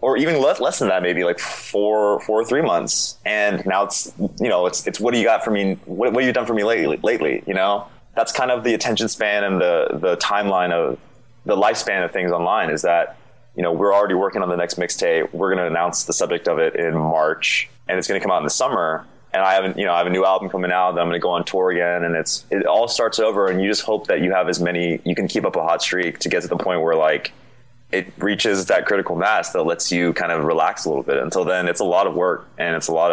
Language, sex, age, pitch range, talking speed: English, male, 20-39, 90-125 Hz, 280 wpm